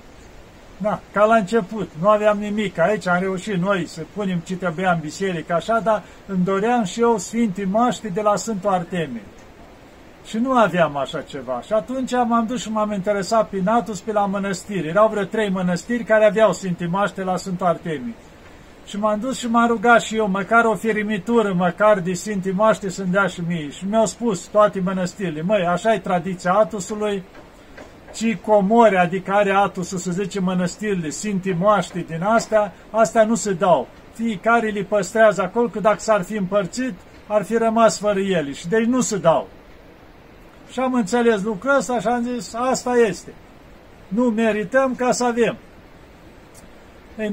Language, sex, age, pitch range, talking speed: Romanian, male, 50-69, 185-225 Hz, 170 wpm